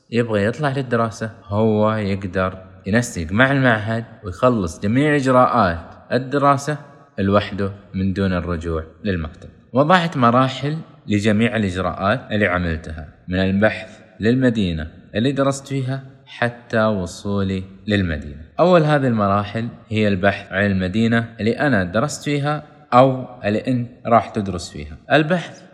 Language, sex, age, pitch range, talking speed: Arabic, male, 20-39, 100-135 Hz, 115 wpm